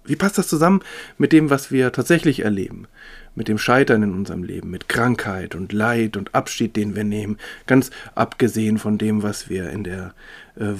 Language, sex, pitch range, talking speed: German, male, 105-130 Hz, 190 wpm